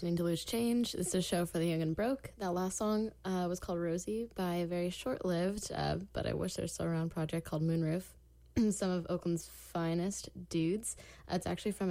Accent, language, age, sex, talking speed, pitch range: American, English, 10-29, female, 205 wpm, 160-180 Hz